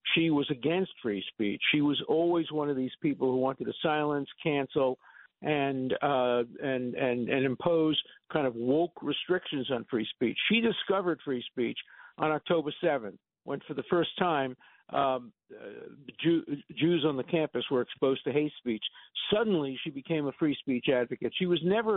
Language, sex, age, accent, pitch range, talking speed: English, male, 50-69, American, 135-170 Hz, 175 wpm